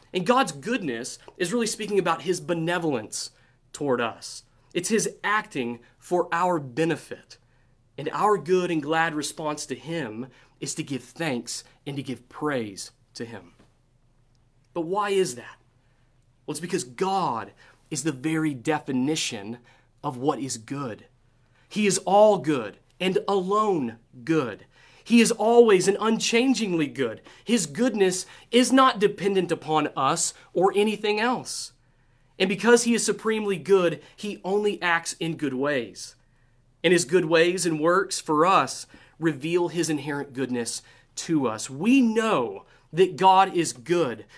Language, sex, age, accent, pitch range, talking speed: English, male, 30-49, American, 125-185 Hz, 145 wpm